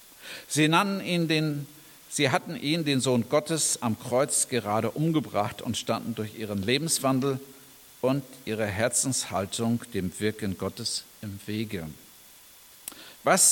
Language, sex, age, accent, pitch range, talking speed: German, male, 50-69, German, 115-155 Hz, 120 wpm